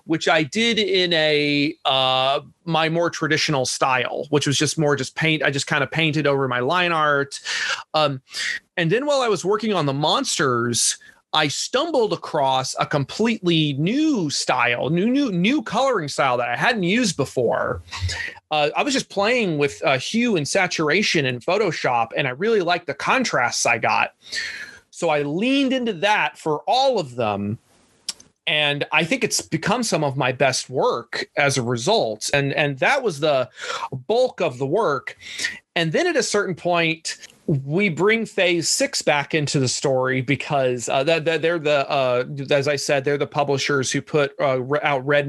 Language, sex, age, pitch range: Thai, male, 30-49, 140-190 Hz